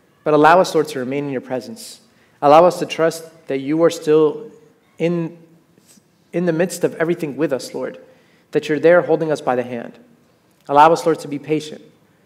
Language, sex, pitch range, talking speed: English, male, 130-160 Hz, 195 wpm